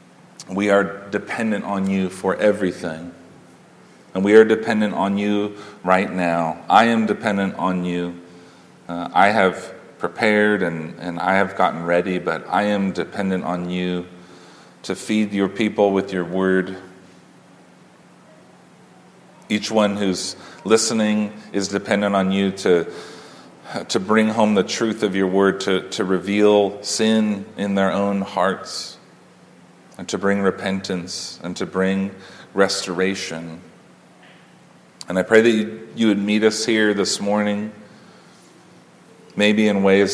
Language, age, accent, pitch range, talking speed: English, 40-59, American, 90-100 Hz, 135 wpm